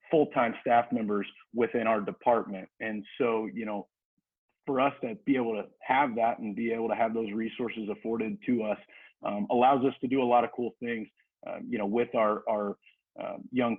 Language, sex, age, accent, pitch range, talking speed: English, male, 30-49, American, 105-125 Hz, 200 wpm